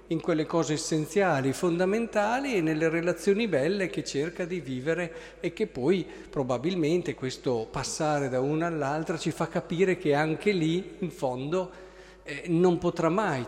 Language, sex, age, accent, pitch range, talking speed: Italian, male, 50-69, native, 140-195 Hz, 150 wpm